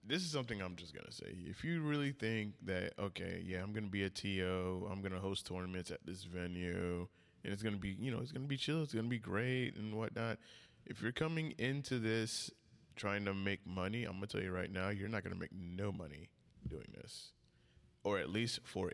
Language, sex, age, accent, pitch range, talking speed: English, male, 20-39, American, 95-115 Hz, 245 wpm